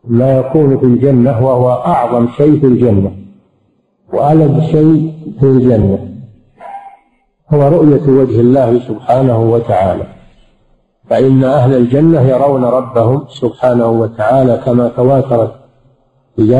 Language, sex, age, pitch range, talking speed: Arabic, male, 50-69, 125-150 Hz, 105 wpm